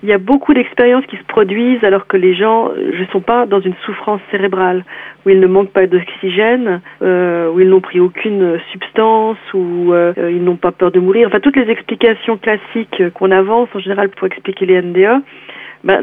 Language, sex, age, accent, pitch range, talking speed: French, female, 40-59, French, 180-220 Hz, 200 wpm